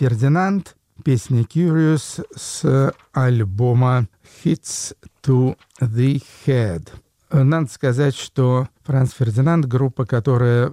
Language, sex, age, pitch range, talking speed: Russian, male, 50-69, 110-135 Hz, 90 wpm